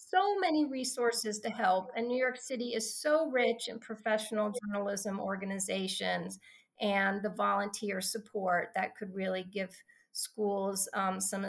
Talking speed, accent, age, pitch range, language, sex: 135 wpm, American, 30-49, 205-265 Hz, English, female